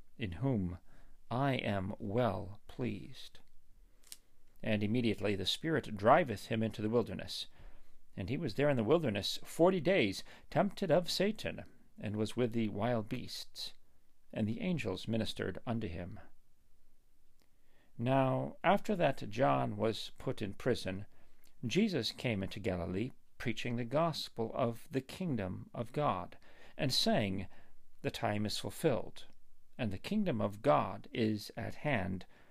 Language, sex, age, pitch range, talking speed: English, male, 50-69, 100-135 Hz, 135 wpm